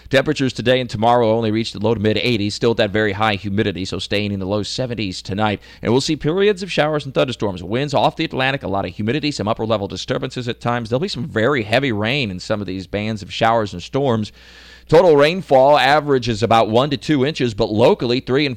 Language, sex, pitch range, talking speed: English, male, 105-135 Hz, 230 wpm